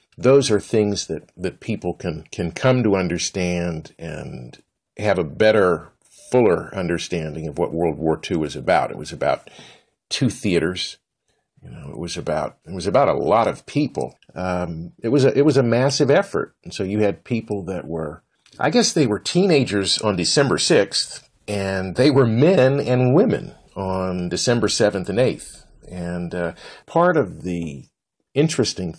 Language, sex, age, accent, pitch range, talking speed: English, male, 50-69, American, 85-110 Hz, 170 wpm